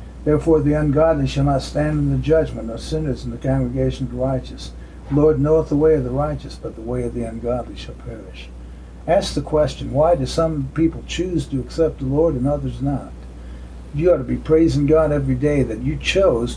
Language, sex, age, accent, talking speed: English, male, 60-79, American, 215 wpm